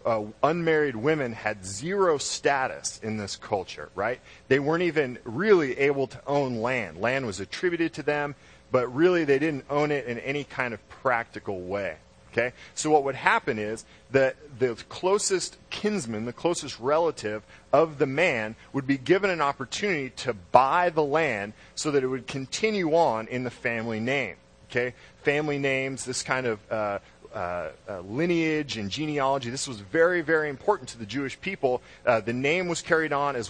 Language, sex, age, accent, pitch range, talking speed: English, male, 40-59, American, 115-155 Hz, 175 wpm